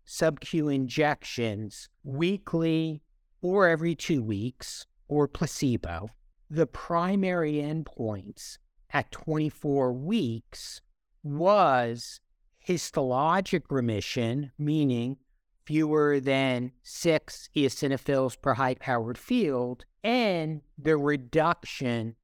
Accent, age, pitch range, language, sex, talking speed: American, 50-69, 125-160 Hz, English, male, 80 wpm